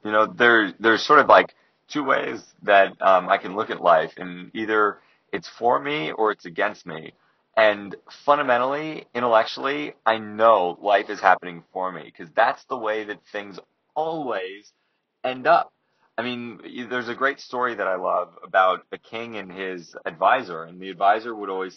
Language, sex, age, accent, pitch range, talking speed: English, male, 30-49, American, 100-130 Hz, 175 wpm